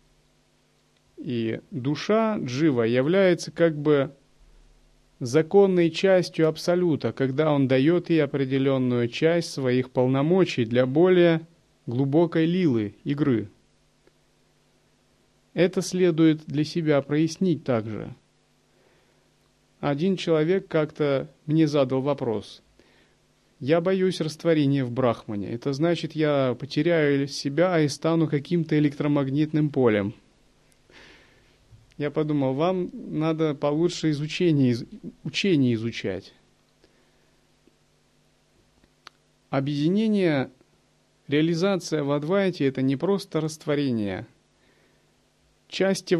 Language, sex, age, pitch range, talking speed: Russian, male, 30-49, 135-170 Hz, 85 wpm